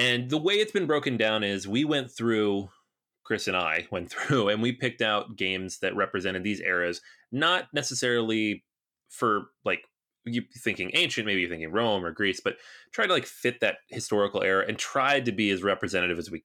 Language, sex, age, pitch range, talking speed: English, male, 20-39, 95-120 Hz, 195 wpm